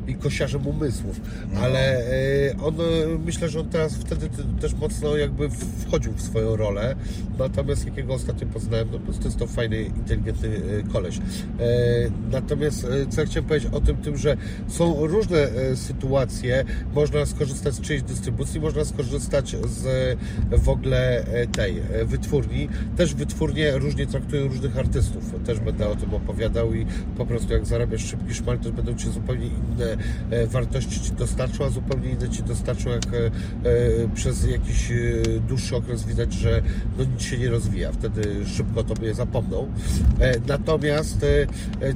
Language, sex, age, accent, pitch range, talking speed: Polish, male, 40-59, native, 105-130 Hz, 145 wpm